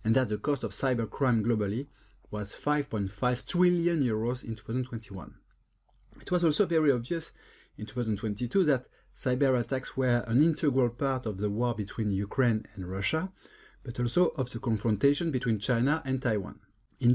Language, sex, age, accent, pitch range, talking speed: English, male, 30-49, French, 110-135 Hz, 150 wpm